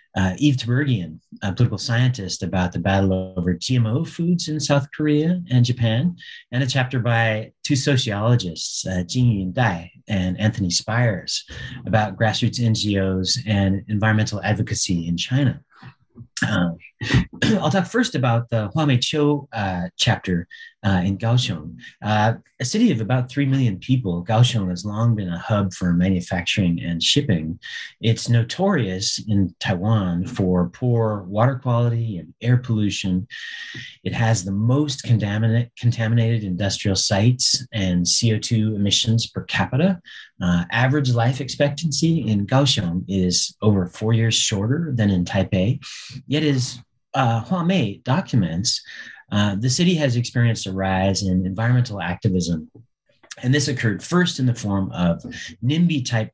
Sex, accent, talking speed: male, American, 135 wpm